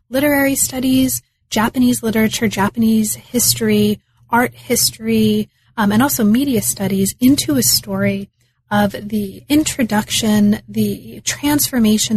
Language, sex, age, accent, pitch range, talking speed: English, female, 30-49, American, 200-240 Hz, 105 wpm